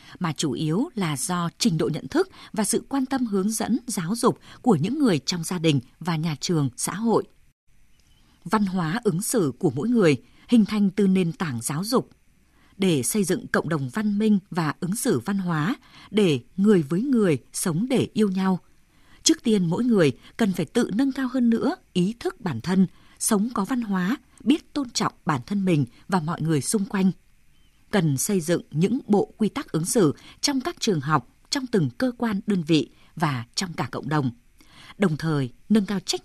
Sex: female